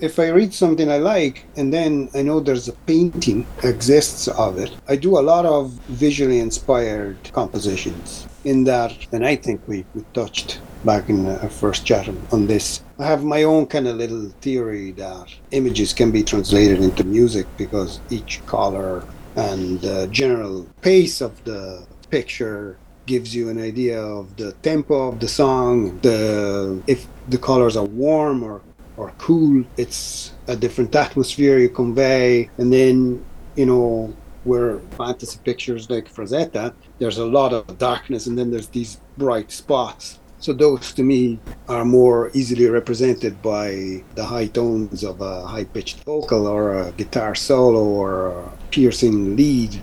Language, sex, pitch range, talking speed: English, male, 105-140 Hz, 160 wpm